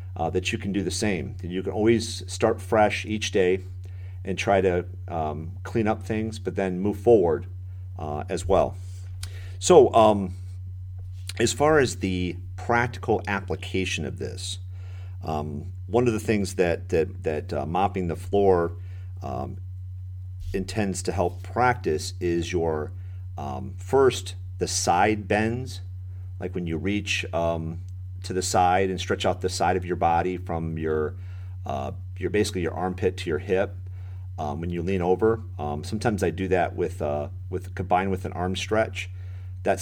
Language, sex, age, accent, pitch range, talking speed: English, male, 50-69, American, 90-95 Hz, 160 wpm